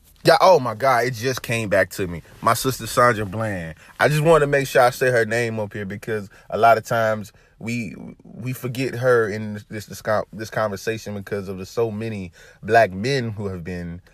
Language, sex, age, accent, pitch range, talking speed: English, male, 20-39, American, 95-115 Hz, 210 wpm